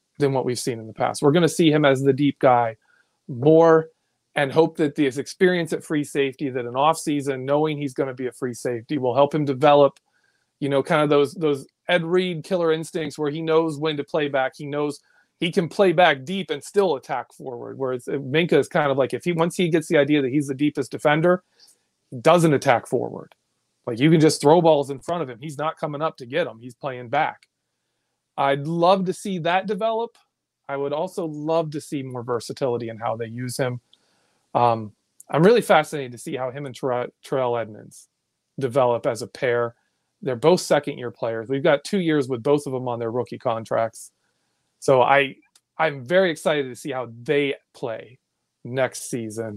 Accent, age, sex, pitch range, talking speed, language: American, 30-49, male, 125-160 Hz, 210 wpm, English